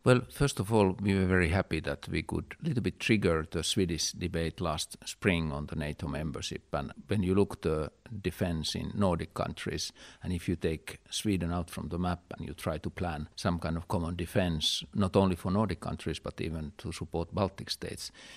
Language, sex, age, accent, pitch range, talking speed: English, male, 50-69, Finnish, 85-105 Hz, 210 wpm